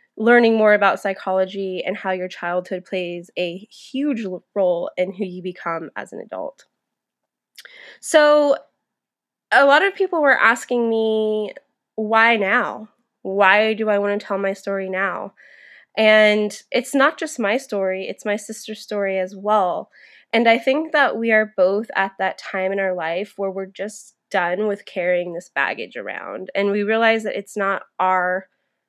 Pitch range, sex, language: 195-230 Hz, female, English